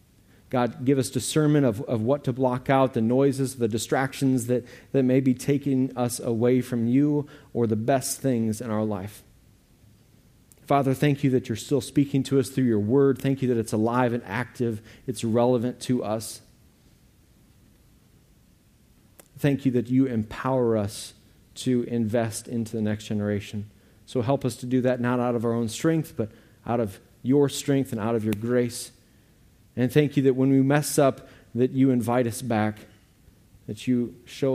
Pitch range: 110-130 Hz